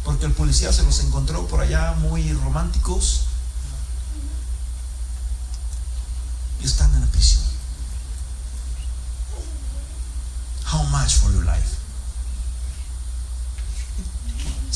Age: 40-59